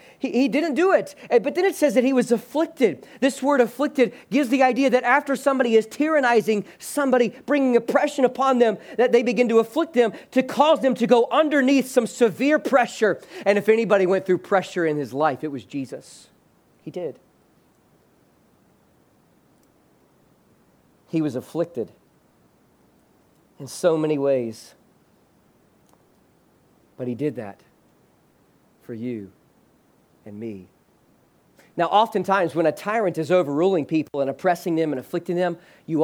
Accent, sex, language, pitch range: American, male, English, 165-245 Hz